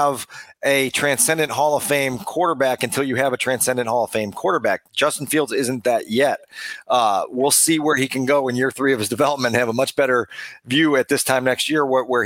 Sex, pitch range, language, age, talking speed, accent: male, 125-155 Hz, English, 40-59, 230 wpm, American